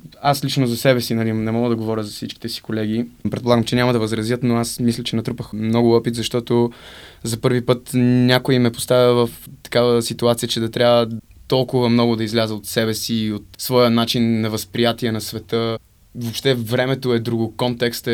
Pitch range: 110-120 Hz